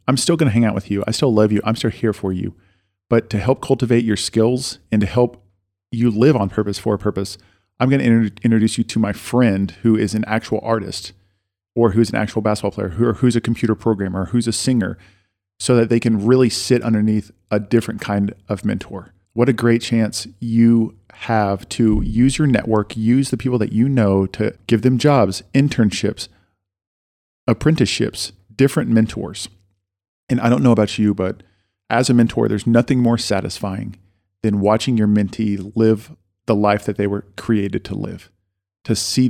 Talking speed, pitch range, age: 195 wpm, 100-115 Hz, 40-59